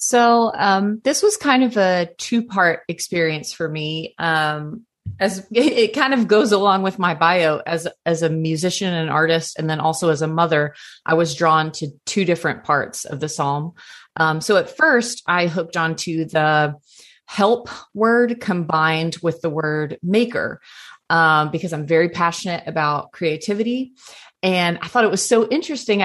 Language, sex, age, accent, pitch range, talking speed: English, female, 30-49, American, 165-225 Hz, 170 wpm